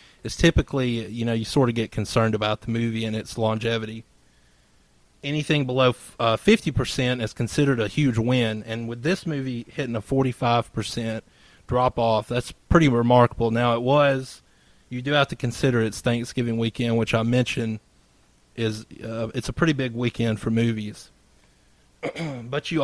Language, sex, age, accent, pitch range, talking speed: English, male, 30-49, American, 110-125 Hz, 160 wpm